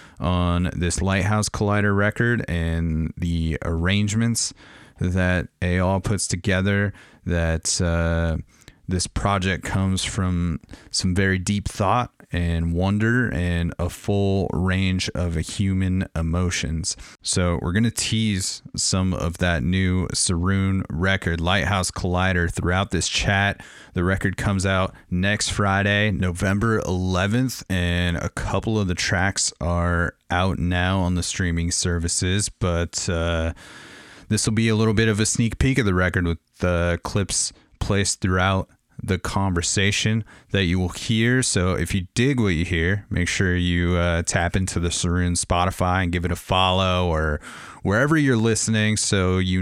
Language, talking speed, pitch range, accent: English, 150 wpm, 85-100 Hz, American